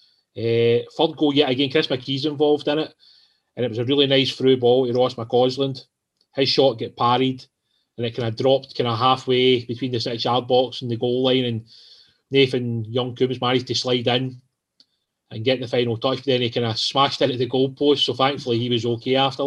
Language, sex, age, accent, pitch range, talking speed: English, male, 30-49, British, 120-135 Hz, 215 wpm